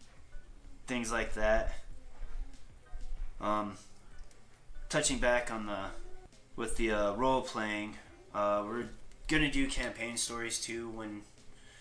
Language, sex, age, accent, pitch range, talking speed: English, male, 20-39, American, 95-115 Hz, 110 wpm